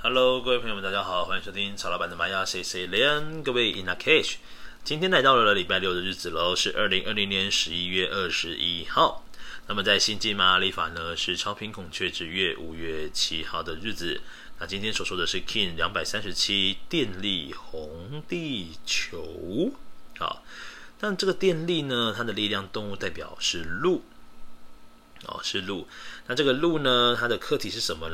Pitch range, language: 90-125 Hz, Chinese